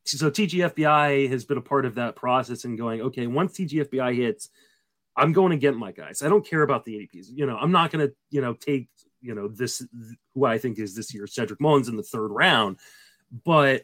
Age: 30-49